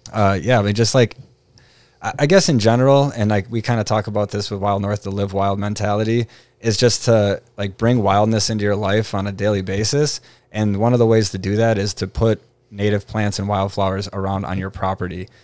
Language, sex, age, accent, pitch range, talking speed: English, male, 20-39, American, 100-115 Hz, 220 wpm